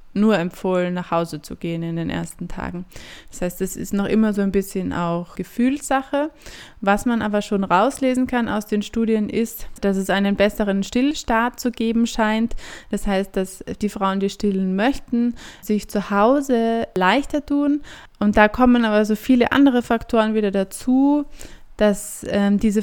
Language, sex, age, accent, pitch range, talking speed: German, female, 20-39, German, 195-225 Hz, 170 wpm